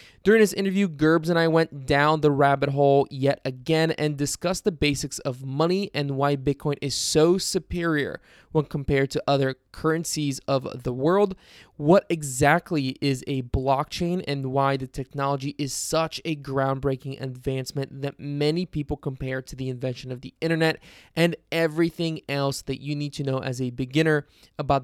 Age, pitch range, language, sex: 20-39, 135-160 Hz, English, male